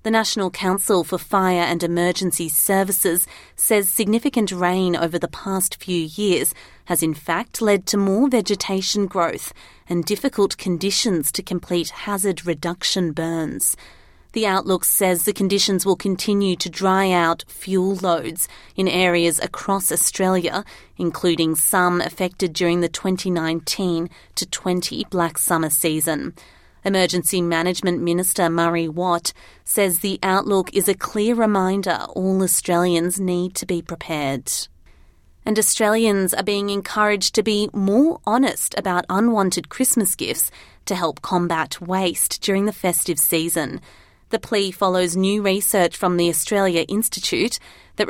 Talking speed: 135 wpm